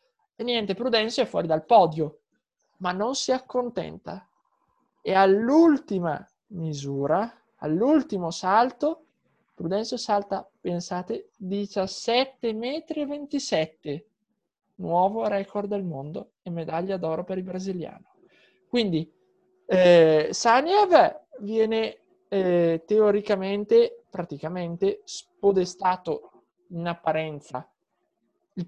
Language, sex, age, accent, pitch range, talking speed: Italian, male, 20-39, native, 180-235 Hz, 90 wpm